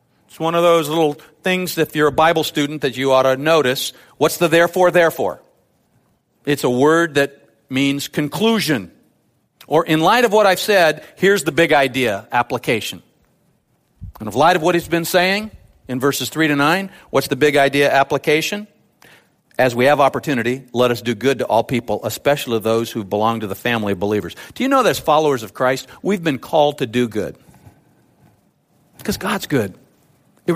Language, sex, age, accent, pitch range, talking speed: English, male, 50-69, American, 125-170 Hz, 185 wpm